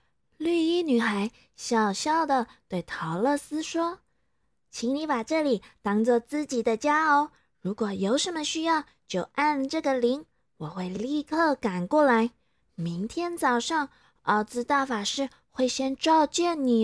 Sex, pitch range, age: female, 210-300 Hz, 20-39